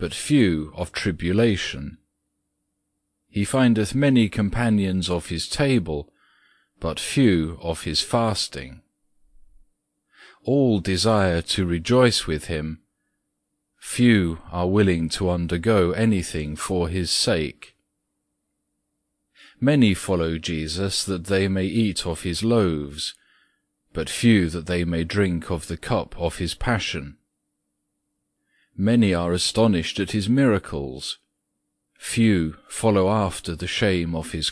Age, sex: 40-59, male